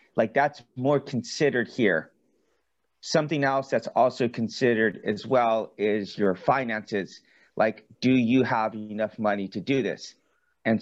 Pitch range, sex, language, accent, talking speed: 105-135 Hz, male, English, American, 140 wpm